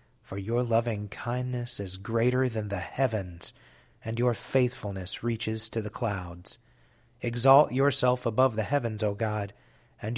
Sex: male